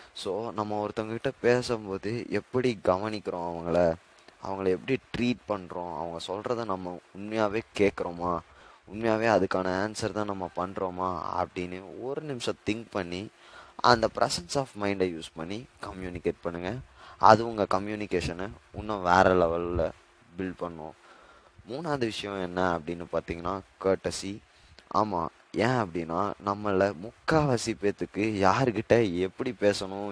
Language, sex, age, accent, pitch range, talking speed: Tamil, male, 20-39, native, 90-110 Hz, 120 wpm